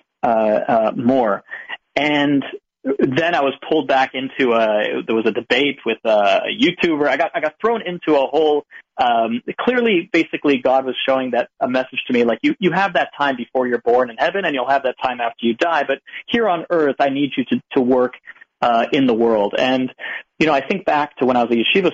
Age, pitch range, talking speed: 30-49, 125-175 Hz, 225 wpm